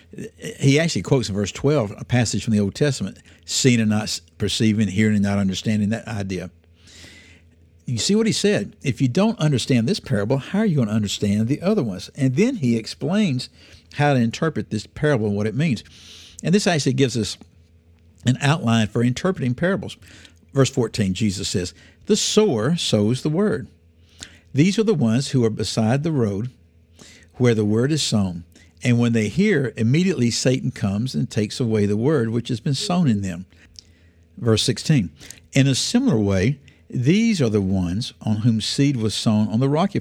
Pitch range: 95-140 Hz